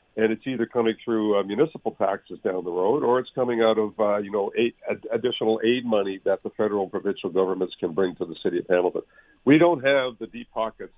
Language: English